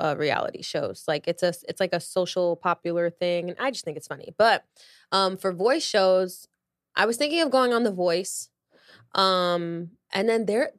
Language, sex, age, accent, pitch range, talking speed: English, female, 20-39, American, 175-215 Hz, 195 wpm